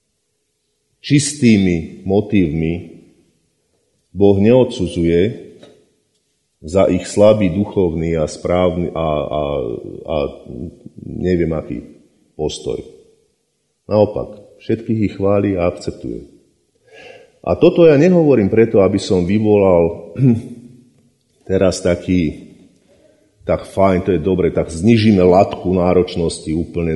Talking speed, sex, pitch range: 95 wpm, male, 90-115 Hz